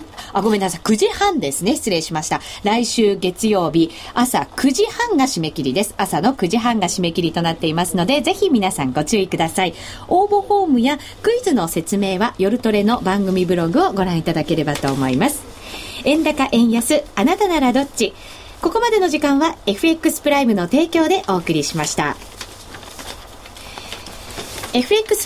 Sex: female